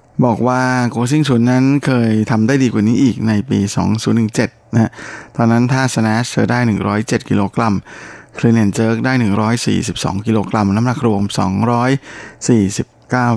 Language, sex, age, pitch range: Thai, male, 20-39, 110-125 Hz